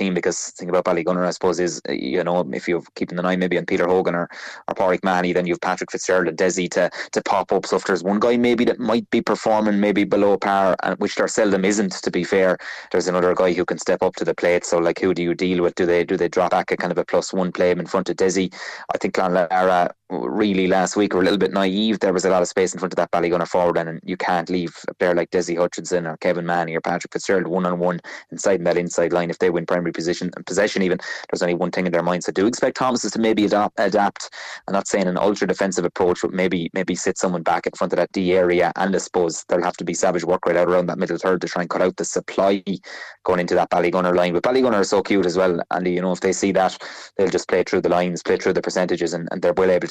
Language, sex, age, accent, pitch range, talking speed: English, male, 20-39, Irish, 90-95 Hz, 285 wpm